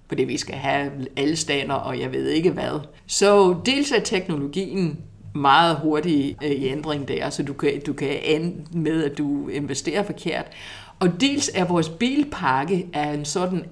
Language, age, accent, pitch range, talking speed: Danish, 60-79, native, 150-190 Hz, 165 wpm